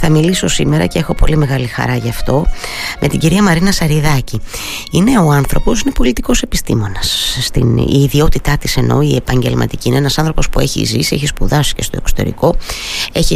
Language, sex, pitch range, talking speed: Greek, female, 115-170 Hz, 175 wpm